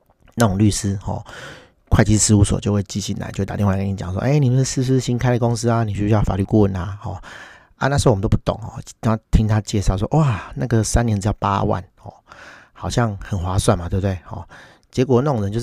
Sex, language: male, Chinese